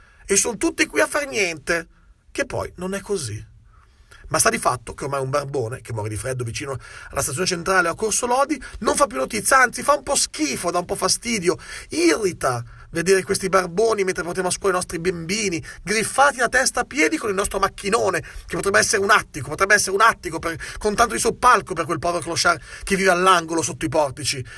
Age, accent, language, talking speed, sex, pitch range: 40-59, native, Italian, 215 wpm, male, 130-200 Hz